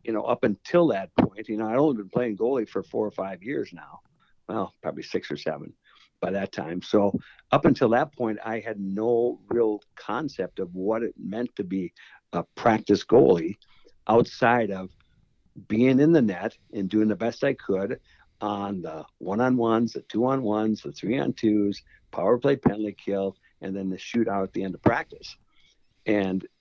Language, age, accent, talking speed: English, 60-79, American, 190 wpm